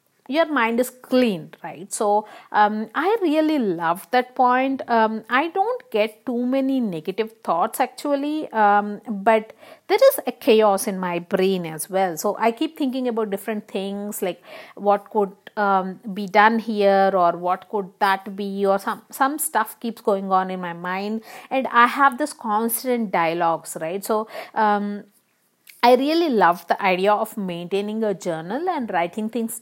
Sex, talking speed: female, 165 wpm